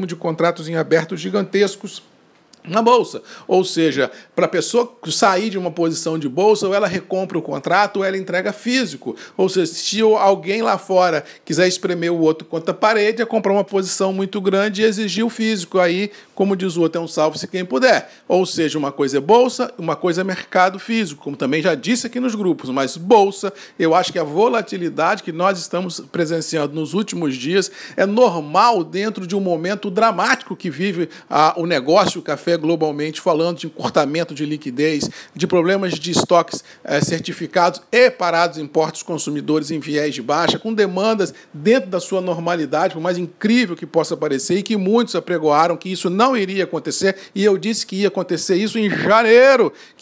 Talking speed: 185 wpm